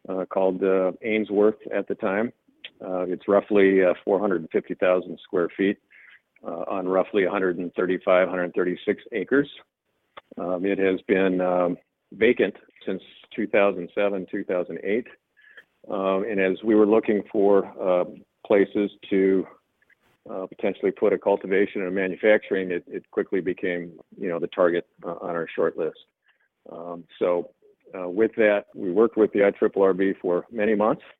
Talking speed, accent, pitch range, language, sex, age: 140 wpm, American, 90-105 Hz, English, male, 50-69